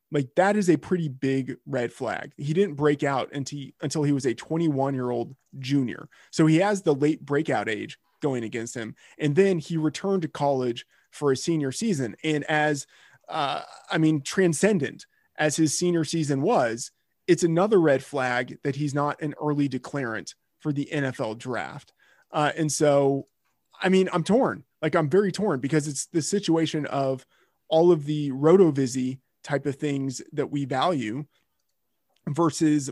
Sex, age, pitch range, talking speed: male, 20-39, 135-165 Hz, 165 wpm